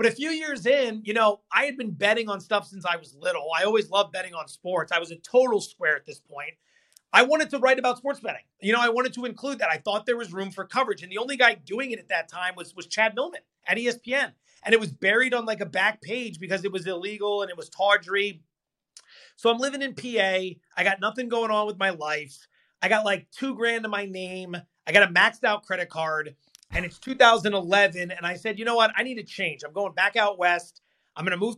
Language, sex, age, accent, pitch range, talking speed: English, male, 30-49, American, 180-230 Hz, 255 wpm